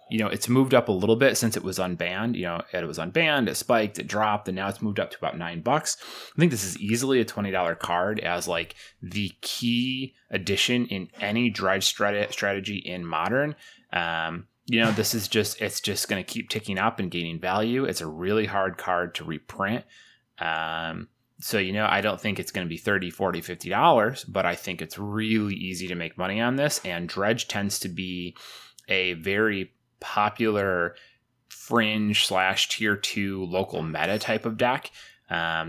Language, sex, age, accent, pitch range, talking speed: English, male, 30-49, American, 90-115 Hz, 195 wpm